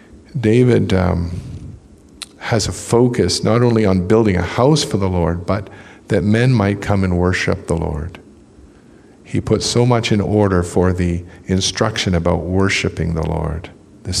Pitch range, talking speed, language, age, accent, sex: 90-110 Hz, 155 wpm, English, 50-69, American, male